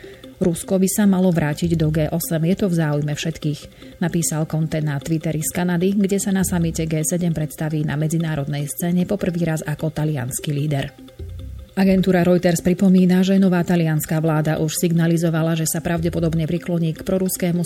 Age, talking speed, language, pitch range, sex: 30-49, 160 wpm, Slovak, 155-185 Hz, female